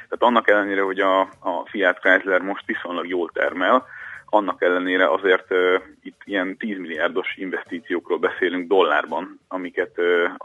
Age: 30-49